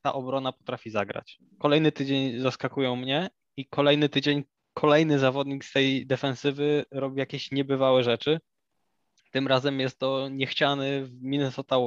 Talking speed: 130 wpm